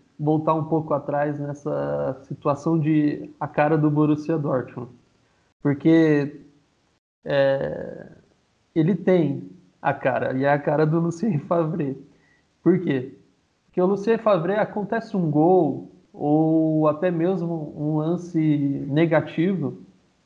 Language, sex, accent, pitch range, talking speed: Portuguese, male, Brazilian, 145-195 Hz, 120 wpm